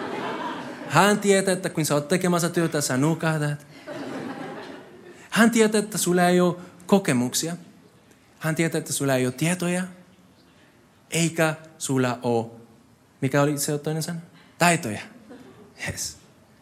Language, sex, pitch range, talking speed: Finnish, male, 130-195 Hz, 125 wpm